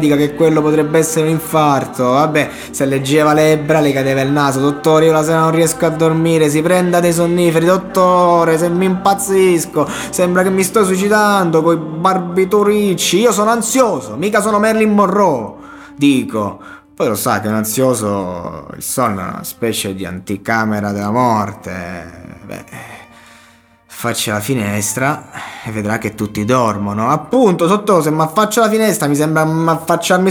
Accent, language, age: native, Italian, 20-39